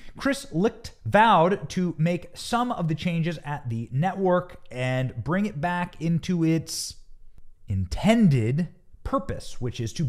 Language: English